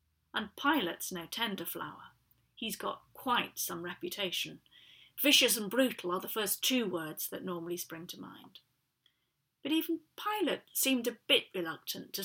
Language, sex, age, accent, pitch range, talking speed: English, female, 40-59, British, 175-240 Hz, 150 wpm